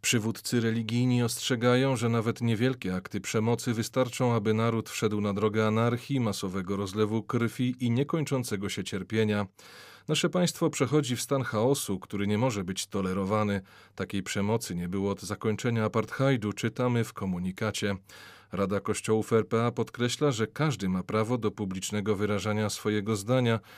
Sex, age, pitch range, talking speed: male, 40-59, 100-125 Hz, 140 wpm